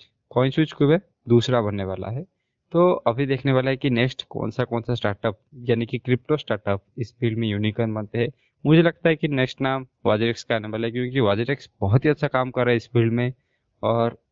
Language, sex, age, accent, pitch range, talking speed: Hindi, male, 20-39, native, 115-140 Hz, 140 wpm